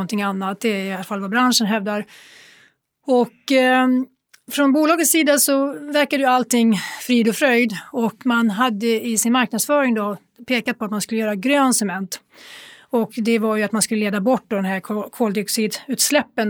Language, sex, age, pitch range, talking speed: Swedish, female, 30-49, 210-250 Hz, 175 wpm